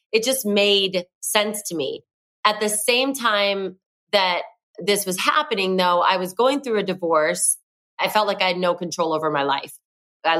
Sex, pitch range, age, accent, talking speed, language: female, 170-200 Hz, 30-49, American, 185 wpm, English